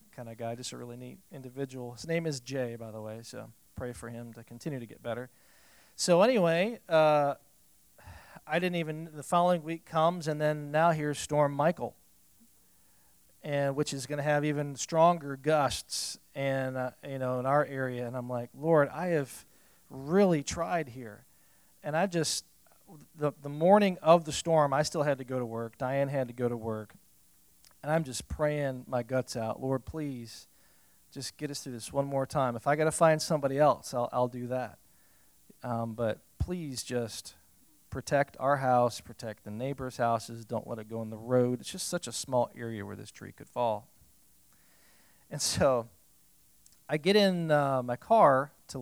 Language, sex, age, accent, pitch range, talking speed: English, male, 40-59, American, 120-150 Hz, 190 wpm